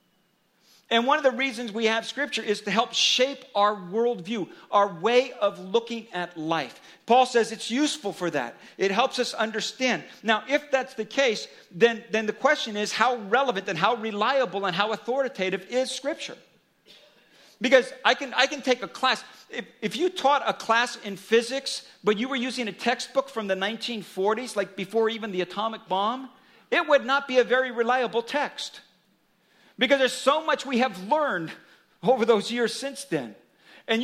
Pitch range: 215-270 Hz